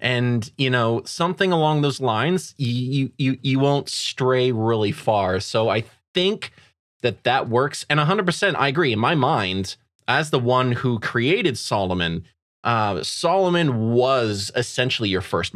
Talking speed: 150 wpm